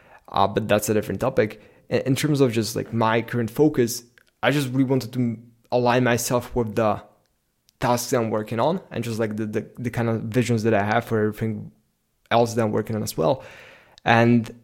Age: 20-39